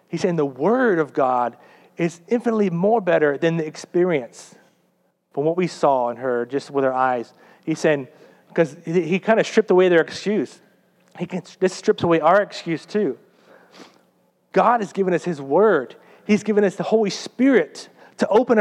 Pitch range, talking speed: 160-205 Hz, 175 wpm